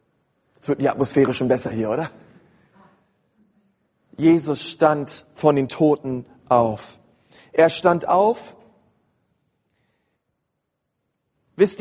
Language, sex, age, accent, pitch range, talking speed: German, male, 40-59, German, 150-200 Hz, 90 wpm